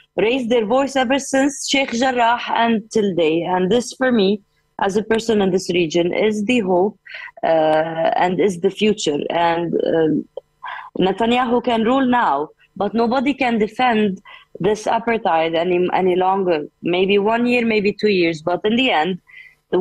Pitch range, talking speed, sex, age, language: 185-245 Hz, 165 wpm, female, 20-39, English